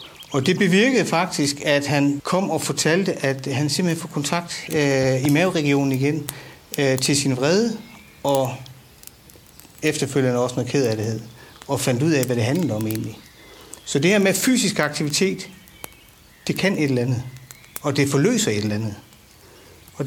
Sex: male